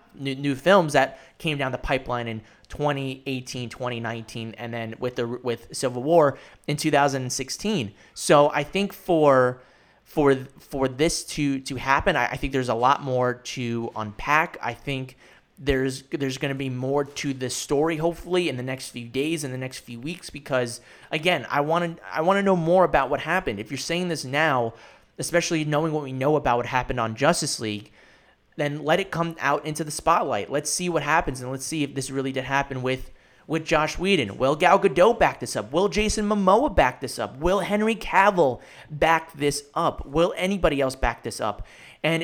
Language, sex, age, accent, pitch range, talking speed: English, male, 30-49, American, 125-165 Hz, 200 wpm